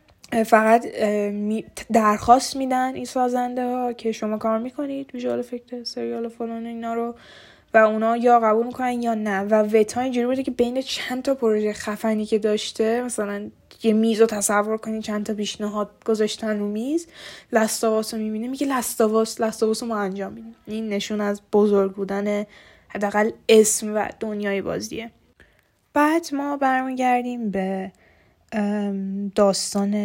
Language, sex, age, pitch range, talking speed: Persian, female, 10-29, 200-225 Hz, 130 wpm